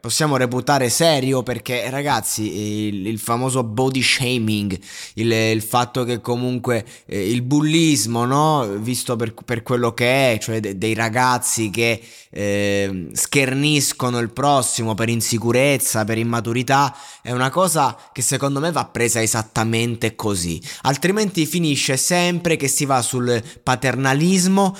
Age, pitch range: 20-39, 115-155 Hz